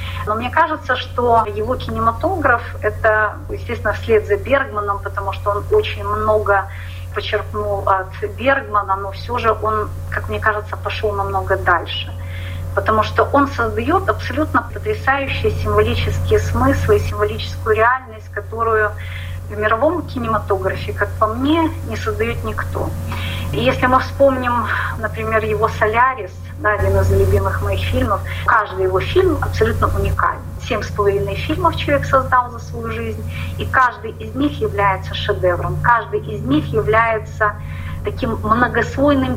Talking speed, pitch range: 135 wpm, 90-110 Hz